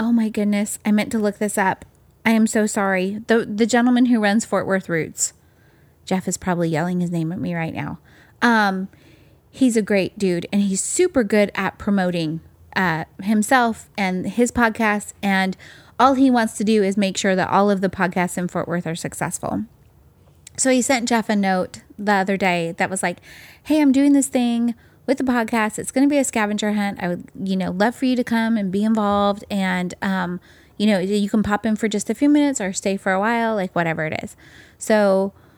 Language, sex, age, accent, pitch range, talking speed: English, female, 30-49, American, 185-225 Hz, 215 wpm